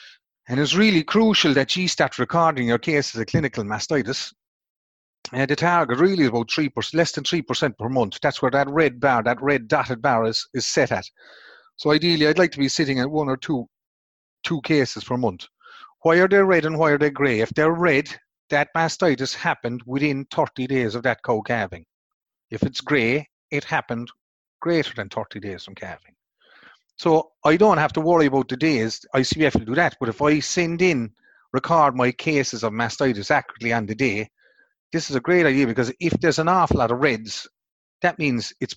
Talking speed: 205 wpm